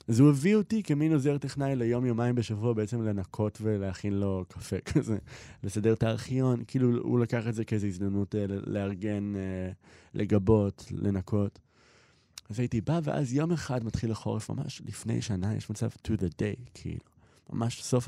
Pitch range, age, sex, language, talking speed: 95-125 Hz, 20-39, male, Hebrew, 165 wpm